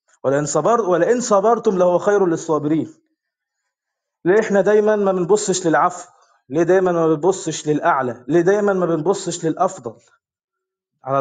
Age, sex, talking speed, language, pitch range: 20-39, male, 125 wpm, Arabic, 155-200 Hz